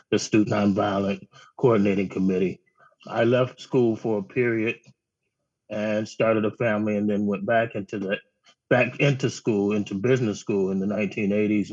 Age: 30-49